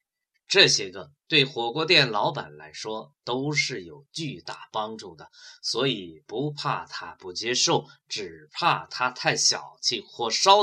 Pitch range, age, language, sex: 120-175 Hz, 20-39, Chinese, male